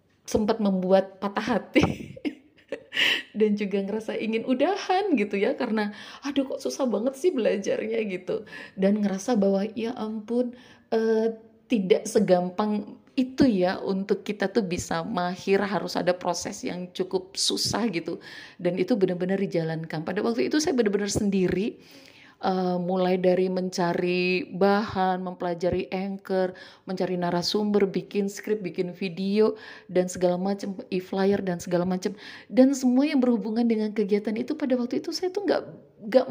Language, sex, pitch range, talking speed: Indonesian, female, 180-230 Hz, 140 wpm